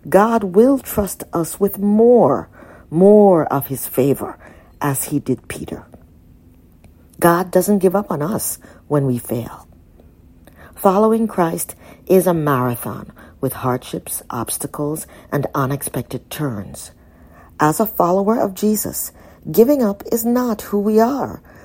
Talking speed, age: 130 wpm, 40-59